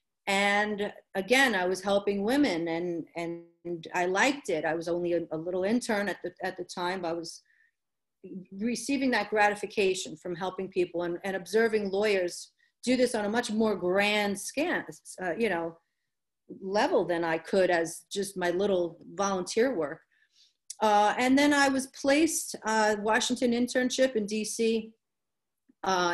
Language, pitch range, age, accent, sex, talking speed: English, 185-230 Hz, 40-59, American, female, 160 wpm